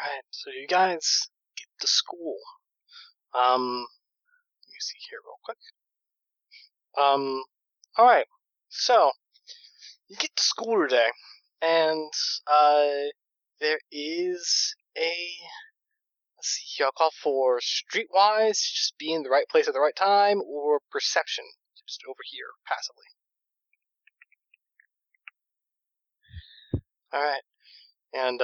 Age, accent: 20-39, American